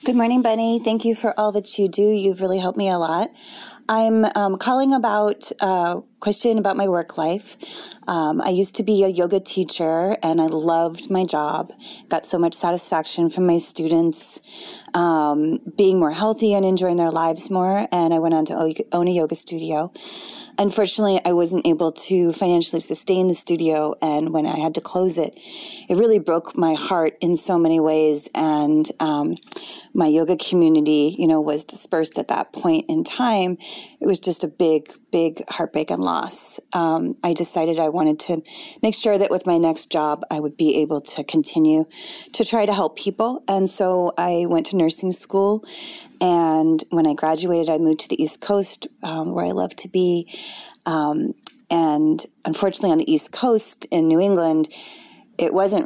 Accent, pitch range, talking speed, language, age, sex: American, 160-205 Hz, 185 wpm, English, 30-49, female